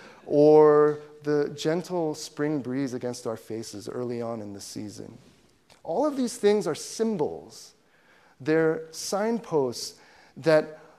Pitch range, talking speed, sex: 120-165 Hz, 120 wpm, male